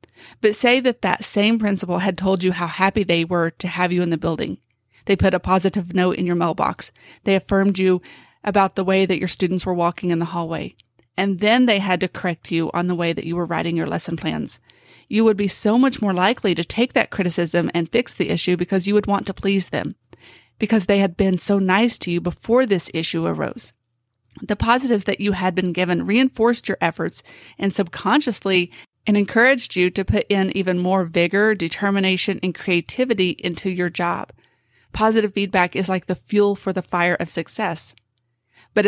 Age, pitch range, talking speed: 30-49, 175-200 Hz, 200 wpm